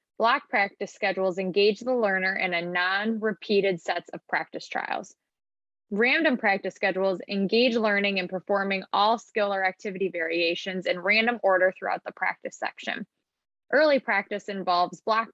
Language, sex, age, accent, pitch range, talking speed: English, female, 20-39, American, 185-220 Hz, 140 wpm